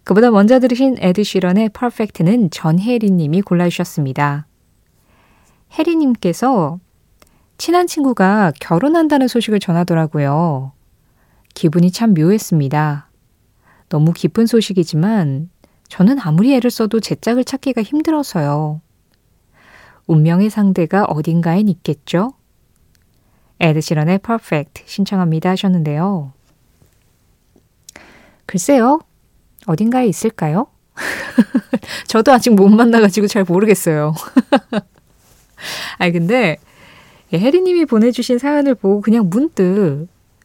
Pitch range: 160-230 Hz